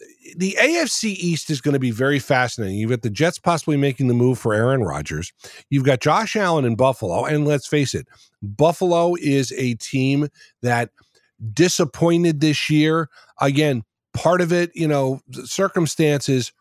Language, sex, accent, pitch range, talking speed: English, male, American, 120-165 Hz, 165 wpm